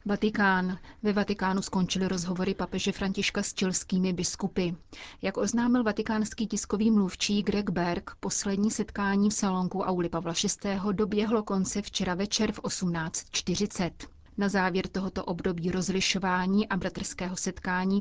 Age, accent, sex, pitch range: 30-49, native, female, 185-210 Hz